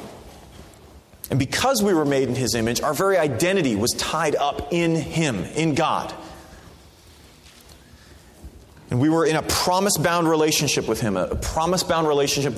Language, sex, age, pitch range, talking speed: English, male, 30-49, 110-170 Hz, 145 wpm